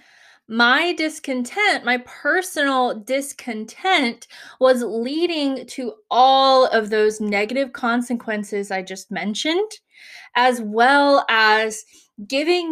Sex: female